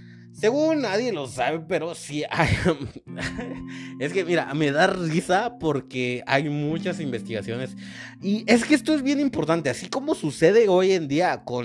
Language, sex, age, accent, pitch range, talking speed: Spanish, male, 30-49, Mexican, 130-175 Hz, 155 wpm